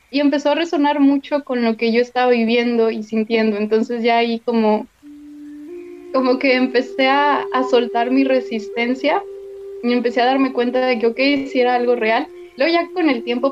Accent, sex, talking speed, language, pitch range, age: Mexican, female, 185 wpm, Spanish, 230-290 Hz, 20-39